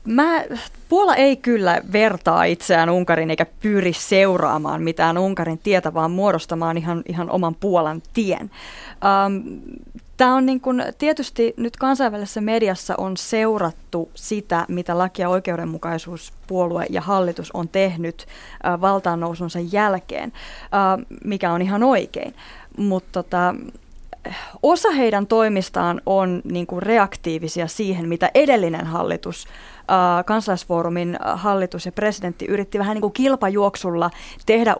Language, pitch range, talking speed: Finnish, 175-215 Hz, 120 wpm